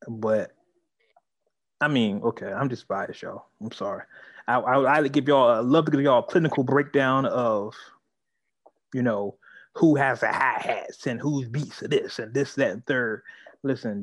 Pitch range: 115-135 Hz